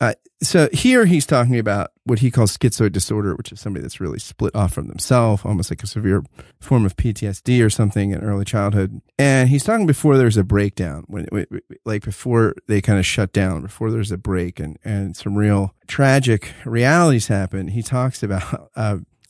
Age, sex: 30-49, male